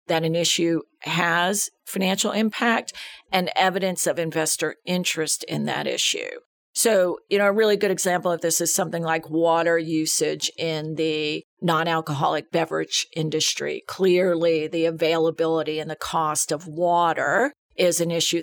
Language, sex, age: English, female, 50-69